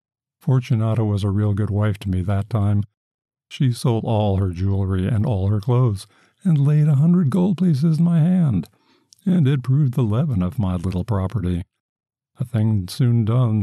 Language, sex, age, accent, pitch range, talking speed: English, male, 50-69, American, 100-130 Hz, 180 wpm